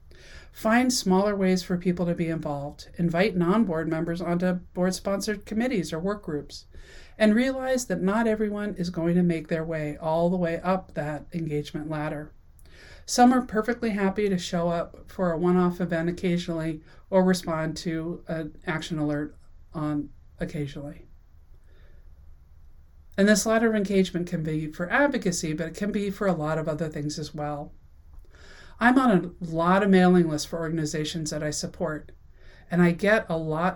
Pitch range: 155-190 Hz